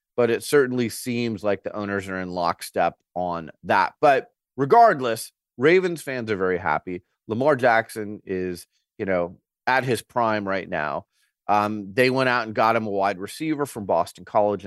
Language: English